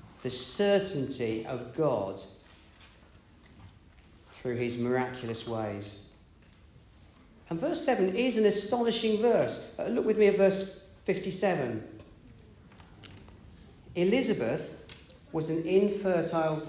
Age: 40-59